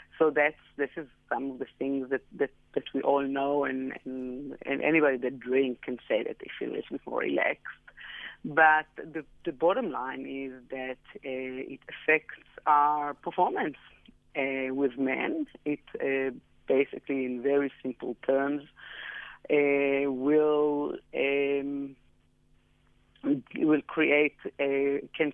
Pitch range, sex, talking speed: 130-145 Hz, female, 140 wpm